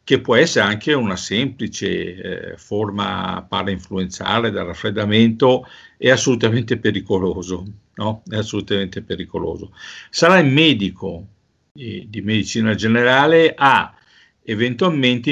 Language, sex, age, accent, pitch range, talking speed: Italian, male, 50-69, native, 100-130 Hz, 100 wpm